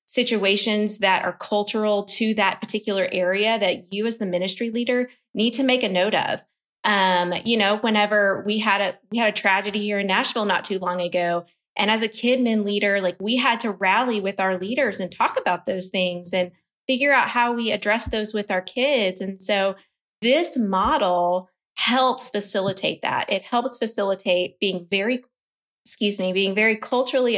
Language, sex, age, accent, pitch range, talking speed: English, female, 20-39, American, 190-240 Hz, 185 wpm